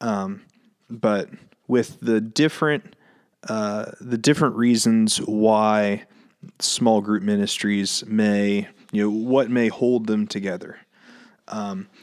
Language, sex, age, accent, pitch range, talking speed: English, male, 30-49, American, 100-145 Hz, 110 wpm